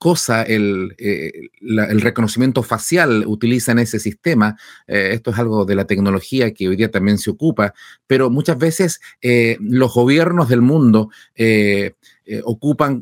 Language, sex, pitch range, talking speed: Spanish, male, 105-135 Hz, 160 wpm